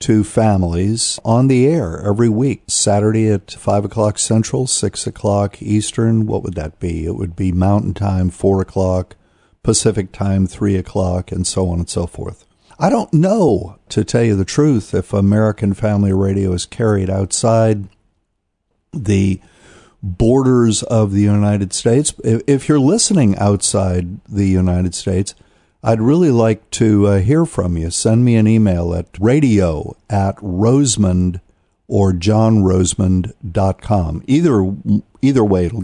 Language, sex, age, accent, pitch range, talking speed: English, male, 50-69, American, 95-115 Hz, 145 wpm